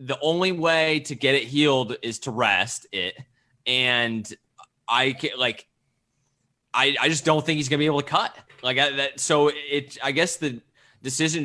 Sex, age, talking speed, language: male, 20-39, 185 wpm, English